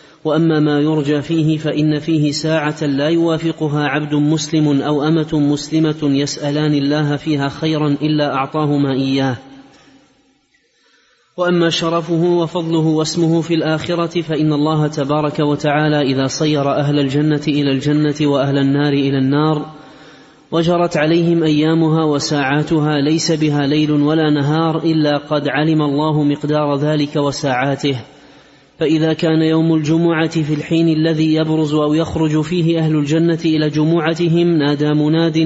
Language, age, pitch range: Arabic, 30-49, 145-160 Hz